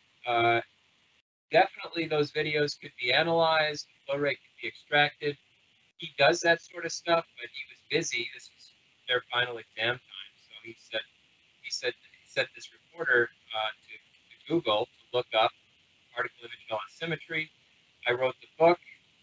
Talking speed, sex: 160 wpm, male